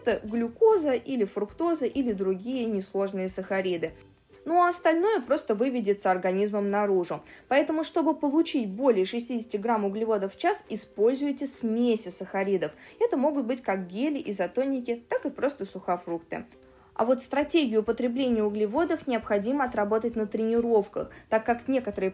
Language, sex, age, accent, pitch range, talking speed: Russian, female, 20-39, native, 195-270 Hz, 130 wpm